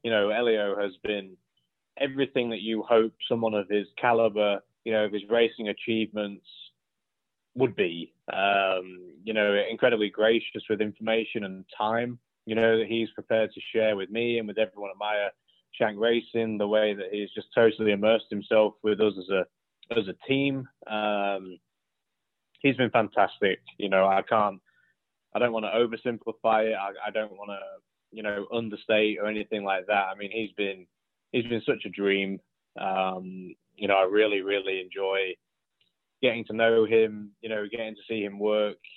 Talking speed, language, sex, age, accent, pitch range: 170 wpm, English, male, 20-39, British, 100-115 Hz